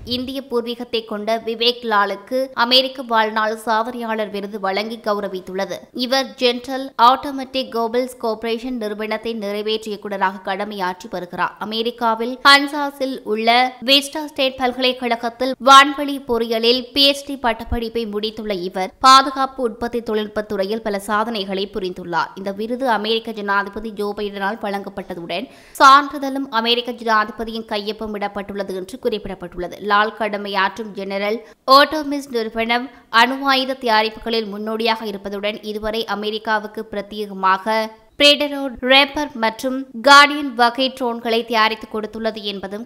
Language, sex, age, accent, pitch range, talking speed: English, female, 20-39, Indian, 210-255 Hz, 100 wpm